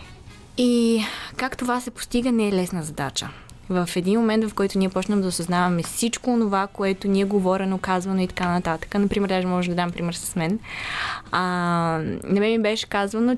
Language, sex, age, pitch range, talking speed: Bulgarian, female, 20-39, 180-230 Hz, 185 wpm